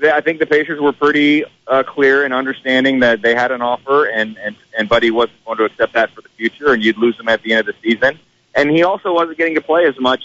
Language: English